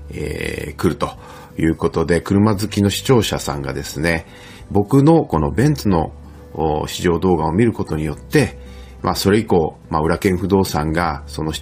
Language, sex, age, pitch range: Japanese, male, 40-59, 75-110 Hz